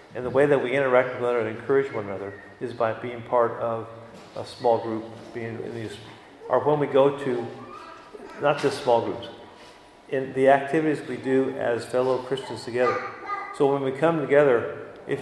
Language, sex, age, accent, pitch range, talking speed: English, male, 50-69, American, 120-145 Hz, 190 wpm